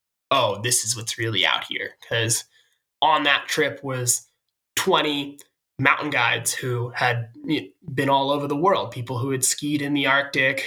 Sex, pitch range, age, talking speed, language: male, 125-145 Hz, 20-39, 165 wpm, English